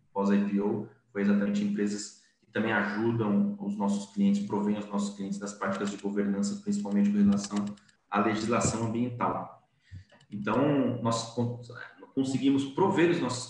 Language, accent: Portuguese, Brazilian